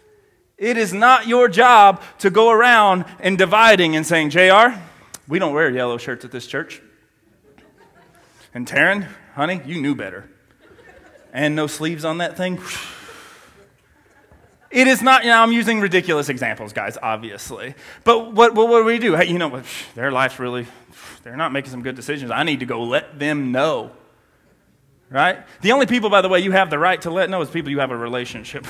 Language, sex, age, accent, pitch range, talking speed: English, male, 30-49, American, 150-230 Hz, 185 wpm